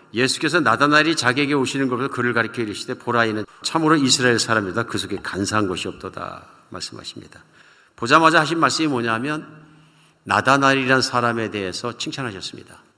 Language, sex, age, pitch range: Korean, male, 50-69, 115-155 Hz